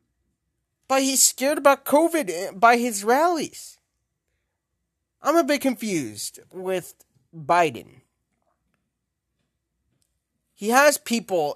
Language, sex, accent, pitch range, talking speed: English, male, American, 160-230 Hz, 90 wpm